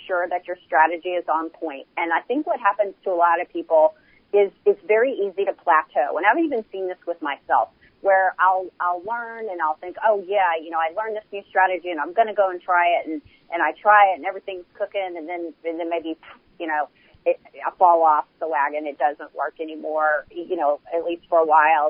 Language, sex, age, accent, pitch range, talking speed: English, female, 40-59, American, 170-220 Hz, 240 wpm